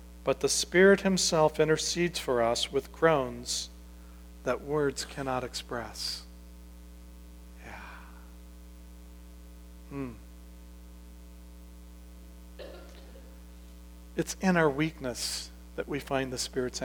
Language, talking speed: English, 85 wpm